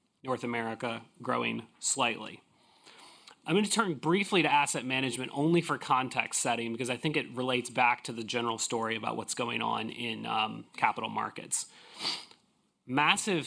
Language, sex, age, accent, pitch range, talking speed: English, male, 30-49, American, 120-135 Hz, 155 wpm